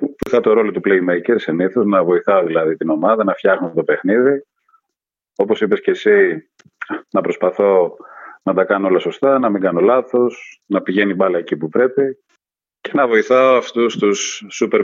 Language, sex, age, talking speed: Greek, male, 40-59, 170 wpm